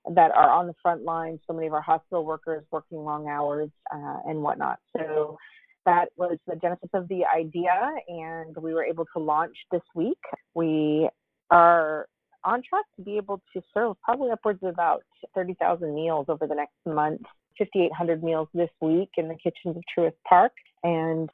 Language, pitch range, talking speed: English, 155-180 Hz, 180 wpm